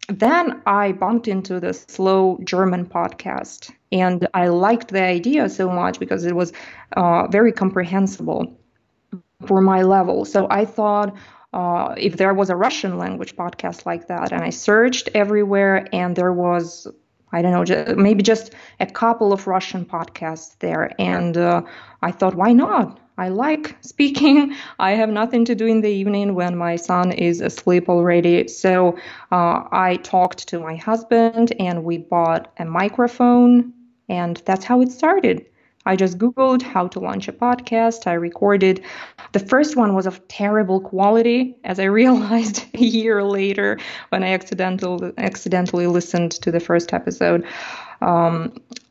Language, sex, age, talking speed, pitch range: English, female, 20-39, 155 wpm, 180-230 Hz